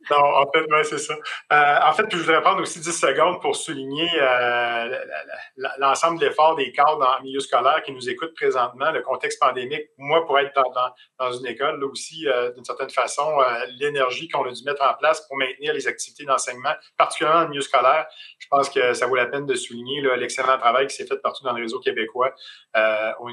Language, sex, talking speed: French, male, 230 wpm